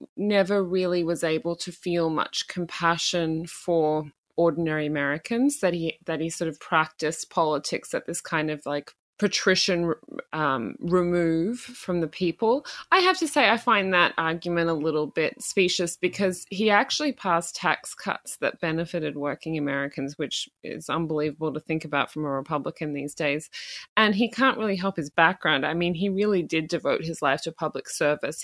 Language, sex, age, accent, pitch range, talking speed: English, female, 20-39, Australian, 150-185 Hz, 170 wpm